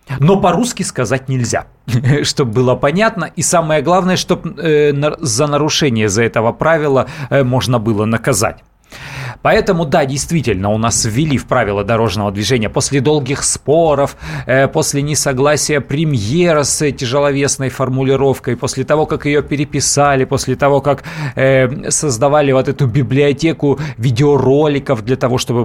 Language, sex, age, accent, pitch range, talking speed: Russian, male, 30-49, native, 120-155 Hz, 135 wpm